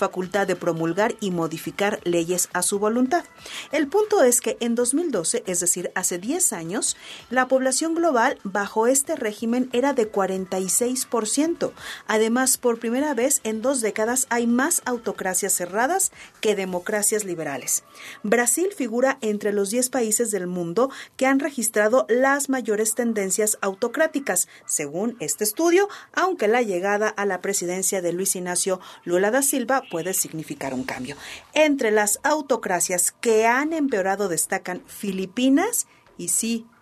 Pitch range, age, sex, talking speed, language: 190-260 Hz, 40-59, female, 140 wpm, Spanish